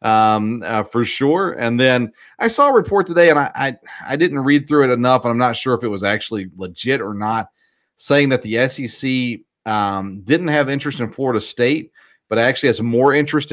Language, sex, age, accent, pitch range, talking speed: English, male, 40-59, American, 110-130 Hz, 210 wpm